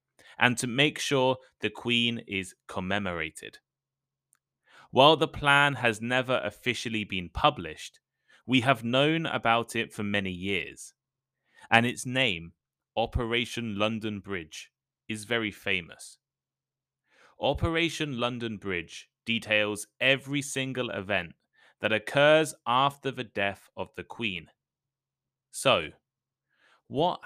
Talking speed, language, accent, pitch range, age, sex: 110 wpm, English, British, 105-135 Hz, 20-39, male